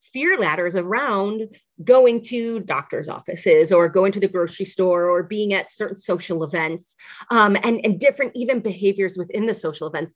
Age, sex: 30-49, female